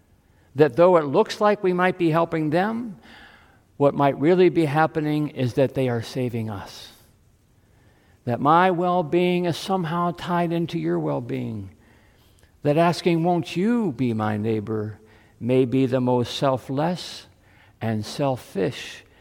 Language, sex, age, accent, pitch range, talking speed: English, male, 50-69, American, 110-155 Hz, 135 wpm